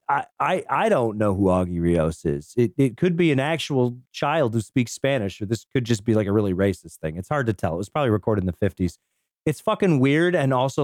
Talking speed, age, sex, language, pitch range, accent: 250 wpm, 40-59, male, English, 110-150 Hz, American